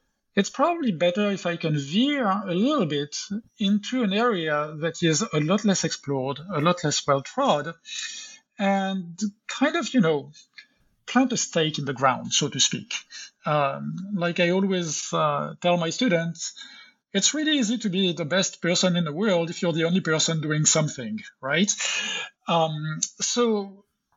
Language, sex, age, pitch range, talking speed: English, male, 50-69, 160-225 Hz, 165 wpm